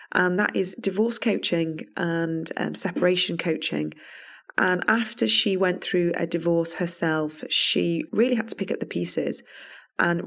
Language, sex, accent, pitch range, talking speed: English, female, British, 160-190 Hz, 150 wpm